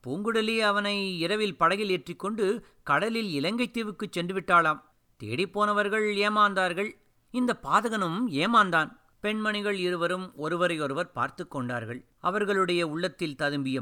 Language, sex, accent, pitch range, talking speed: Tamil, male, native, 145-200 Hz, 105 wpm